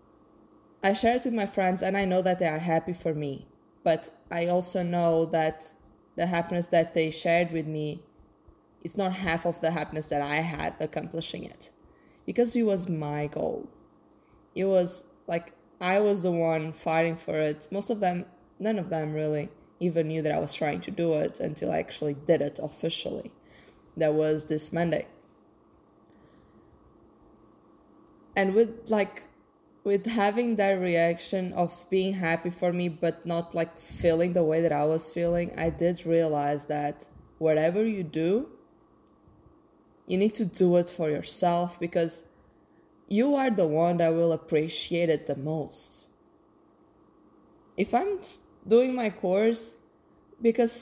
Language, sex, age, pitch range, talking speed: English, female, 20-39, 160-200 Hz, 155 wpm